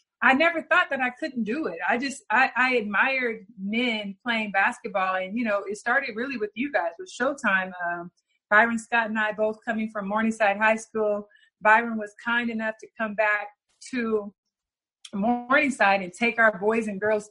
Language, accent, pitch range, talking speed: English, American, 210-255 Hz, 185 wpm